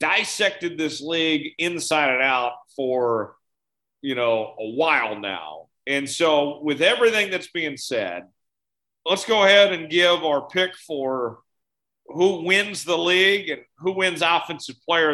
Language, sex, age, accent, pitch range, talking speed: English, male, 40-59, American, 145-175 Hz, 145 wpm